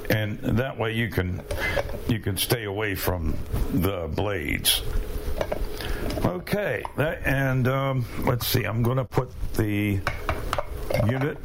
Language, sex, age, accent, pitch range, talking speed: English, male, 60-79, American, 100-130 Hz, 120 wpm